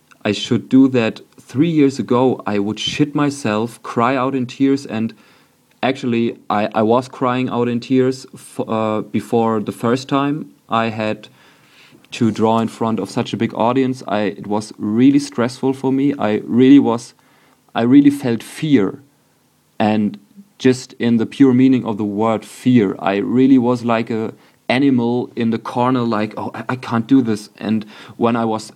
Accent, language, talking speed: German, English, 175 wpm